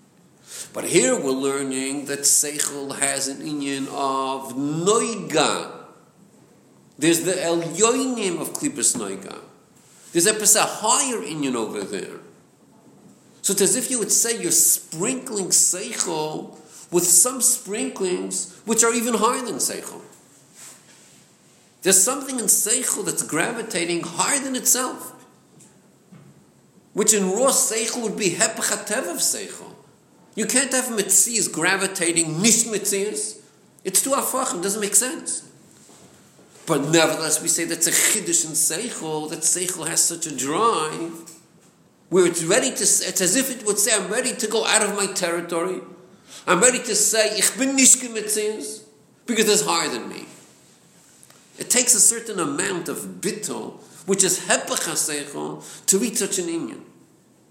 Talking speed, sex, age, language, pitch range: 140 wpm, male, 50-69, English, 165-230 Hz